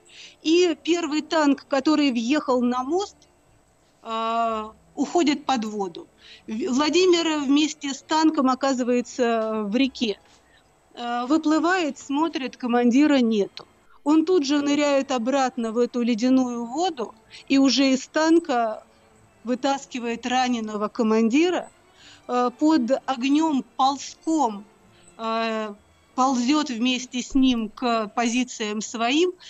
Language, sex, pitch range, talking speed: Russian, female, 230-295 Hz, 95 wpm